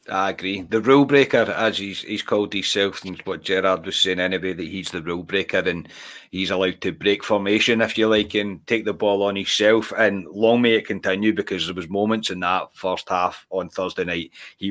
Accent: British